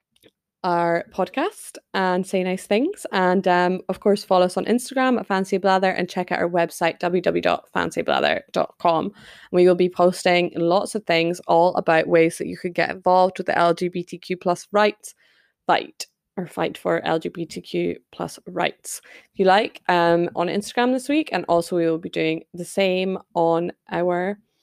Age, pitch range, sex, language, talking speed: 20-39, 175-205 Hz, female, English, 165 wpm